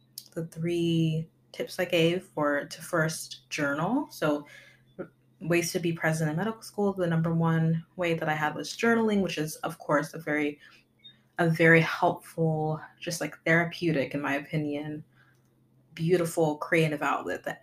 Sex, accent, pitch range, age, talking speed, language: female, American, 150-170 Hz, 20-39, 155 wpm, English